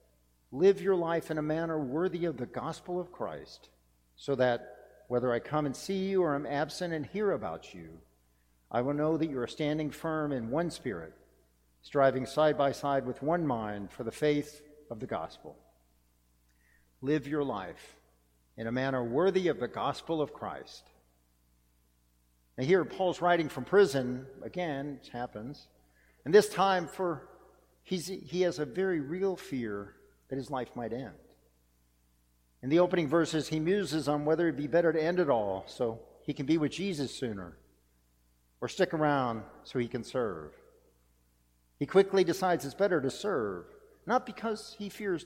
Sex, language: male, English